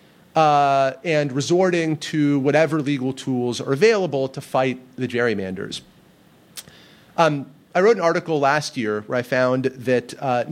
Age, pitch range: 30-49, 125-165 Hz